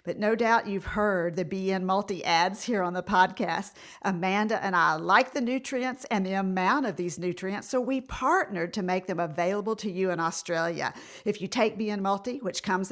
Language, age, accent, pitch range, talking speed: English, 50-69, American, 180-225 Hz, 200 wpm